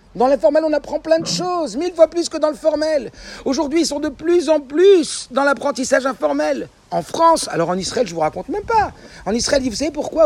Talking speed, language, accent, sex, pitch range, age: 235 wpm, French, French, male, 210-315 Hz, 50-69